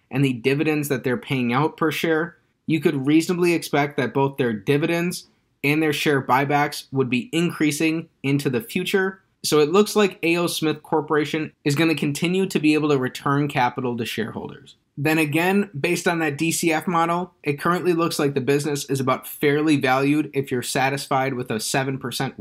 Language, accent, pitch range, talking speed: English, American, 135-165 Hz, 180 wpm